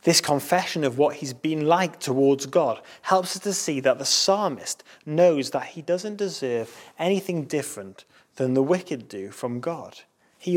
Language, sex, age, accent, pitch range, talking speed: English, male, 30-49, British, 135-180 Hz, 170 wpm